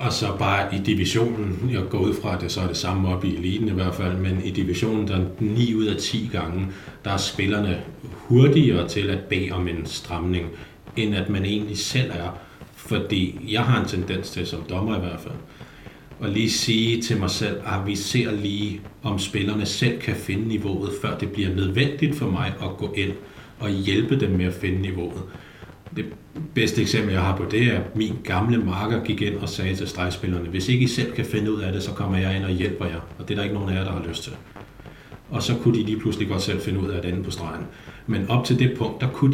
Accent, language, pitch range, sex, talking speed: native, Danish, 95-115 Hz, male, 240 wpm